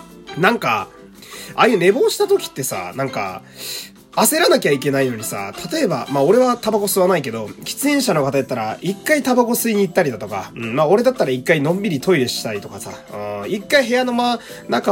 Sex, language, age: male, Japanese, 20-39